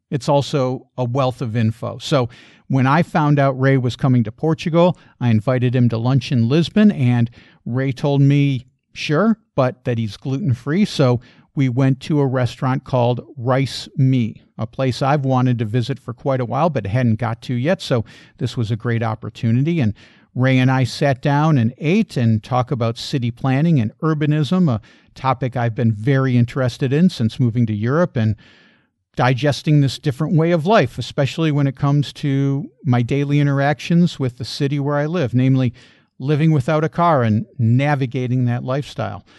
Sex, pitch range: male, 120-145 Hz